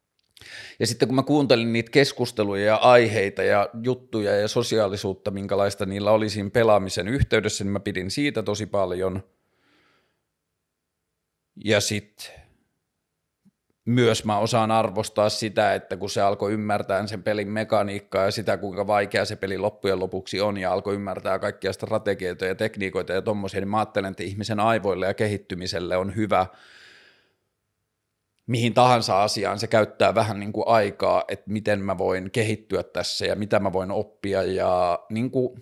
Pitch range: 100-115 Hz